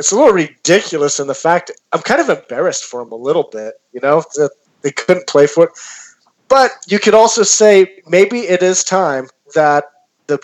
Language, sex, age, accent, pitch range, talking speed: English, male, 40-59, American, 135-175 Hz, 200 wpm